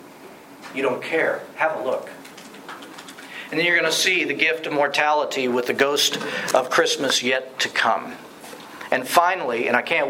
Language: English